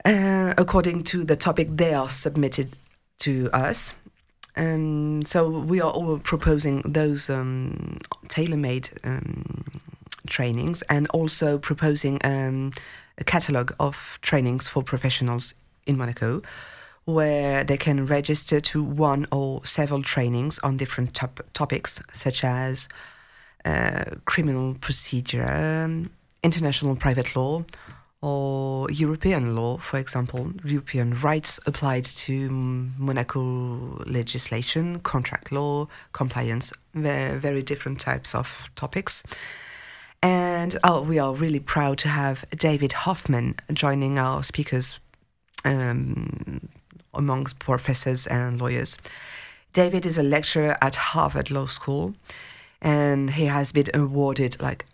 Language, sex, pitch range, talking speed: English, female, 130-155 Hz, 115 wpm